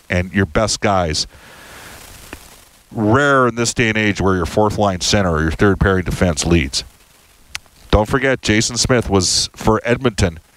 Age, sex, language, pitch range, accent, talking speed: 50-69, male, English, 90-115 Hz, American, 155 wpm